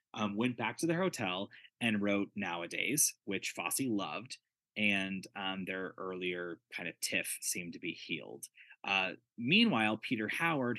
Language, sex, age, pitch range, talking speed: English, male, 20-39, 90-120 Hz, 150 wpm